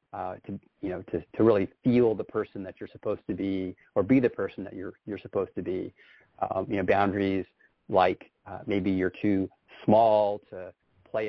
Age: 30-49